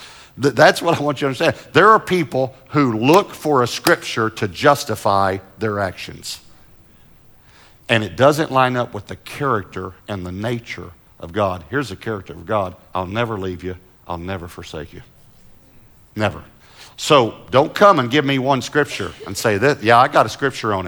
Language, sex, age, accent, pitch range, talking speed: English, male, 50-69, American, 105-140 Hz, 180 wpm